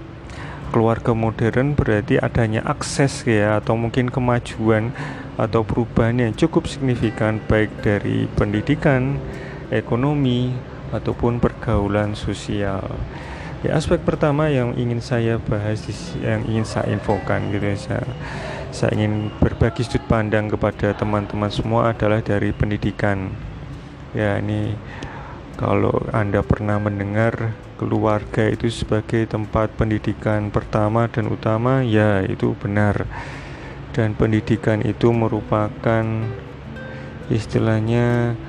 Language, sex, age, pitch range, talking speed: Indonesian, male, 30-49, 110-130 Hz, 105 wpm